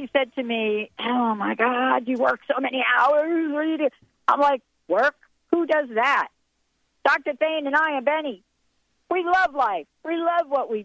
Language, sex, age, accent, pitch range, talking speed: English, female, 50-69, American, 190-285 Hz, 165 wpm